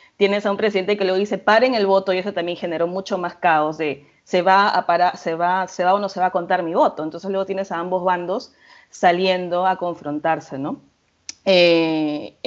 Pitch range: 170-195 Hz